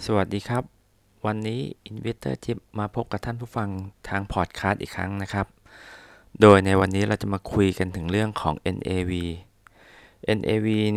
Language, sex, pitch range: Thai, male, 90-105 Hz